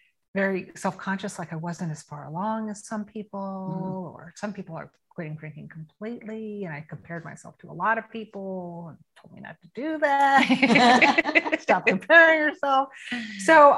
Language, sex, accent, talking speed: English, female, American, 165 wpm